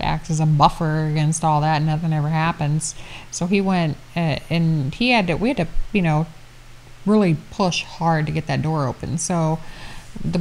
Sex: female